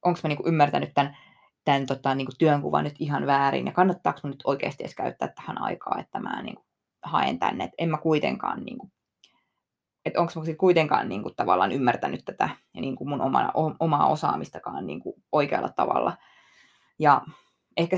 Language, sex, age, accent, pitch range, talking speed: Finnish, female, 20-39, native, 145-175 Hz, 165 wpm